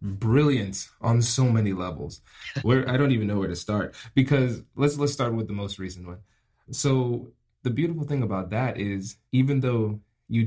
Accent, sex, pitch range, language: American, male, 100-125 Hz, English